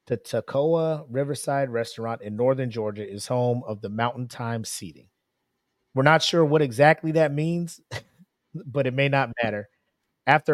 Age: 30-49